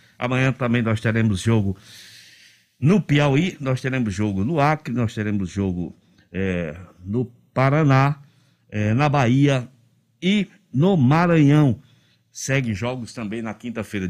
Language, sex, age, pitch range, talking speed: Portuguese, male, 60-79, 105-140 Hz, 125 wpm